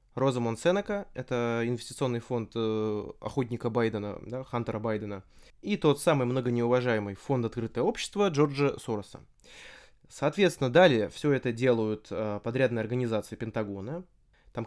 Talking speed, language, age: 115 wpm, Russian, 20-39